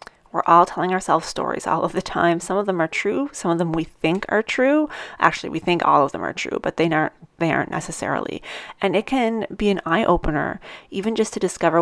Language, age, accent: English, 30-49, American